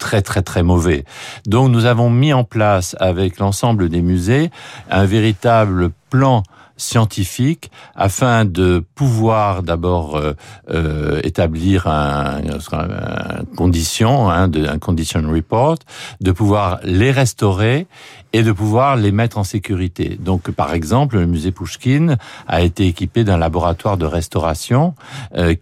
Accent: French